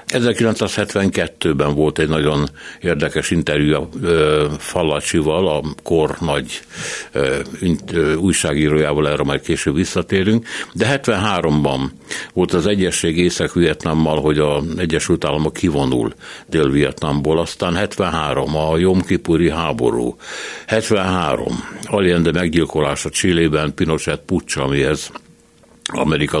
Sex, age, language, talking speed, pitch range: male, 60-79, Hungarian, 95 wpm, 75-90 Hz